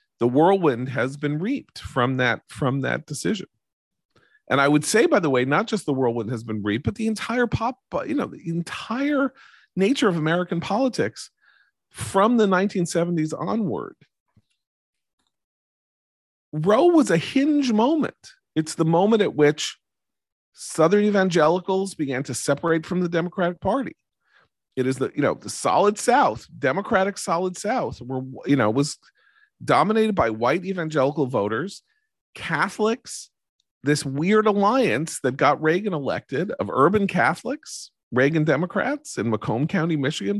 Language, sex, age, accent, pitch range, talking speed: English, male, 40-59, American, 130-205 Hz, 145 wpm